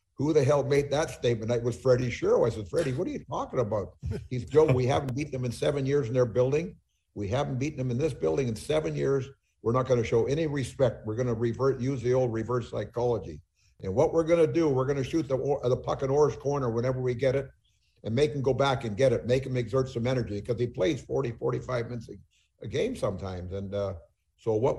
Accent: American